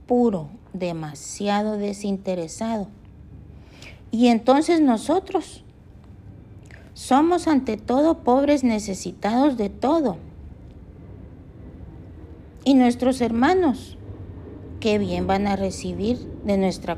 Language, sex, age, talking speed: Spanish, female, 50-69, 80 wpm